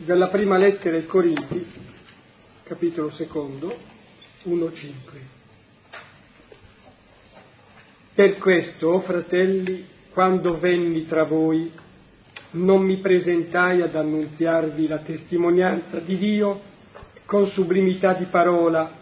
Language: Italian